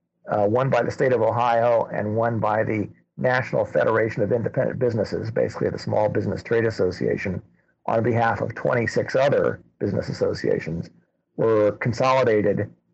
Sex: male